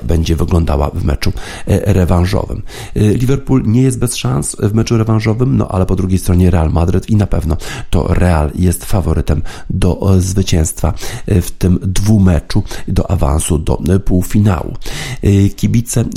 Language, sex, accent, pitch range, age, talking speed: Polish, male, native, 90-105 Hz, 50-69, 135 wpm